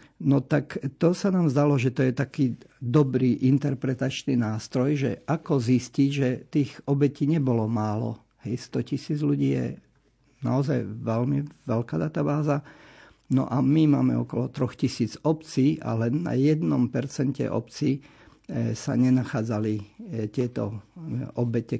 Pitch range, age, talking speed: 120-145 Hz, 50-69, 130 wpm